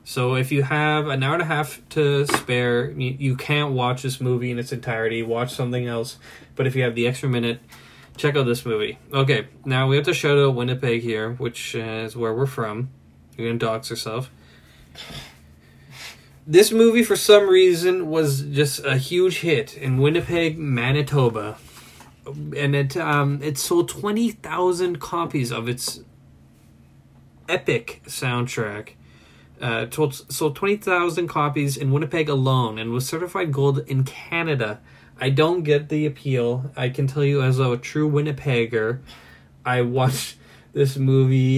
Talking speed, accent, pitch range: 155 wpm, American, 120-150 Hz